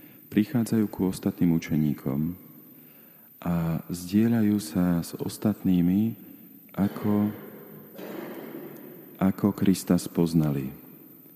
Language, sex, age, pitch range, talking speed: Slovak, male, 40-59, 80-100 Hz, 70 wpm